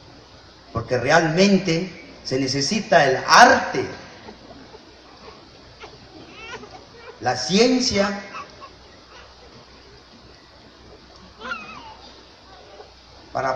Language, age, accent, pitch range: English, 40-59, Mexican, 140-200 Hz